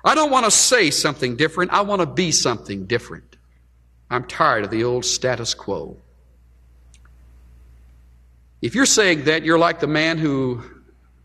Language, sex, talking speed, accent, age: English, male, 155 wpm, American, 60-79